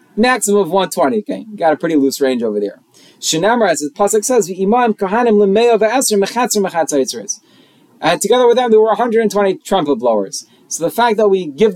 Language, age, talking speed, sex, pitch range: English, 30-49, 185 wpm, male, 180-235 Hz